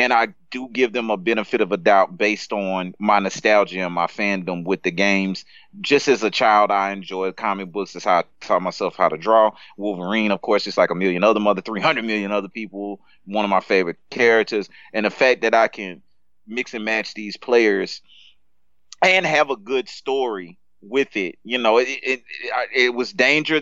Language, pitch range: English, 105-130 Hz